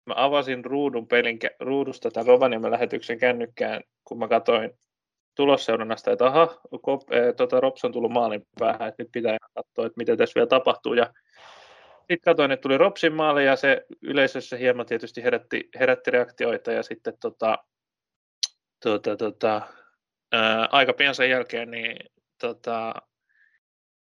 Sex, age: male, 20-39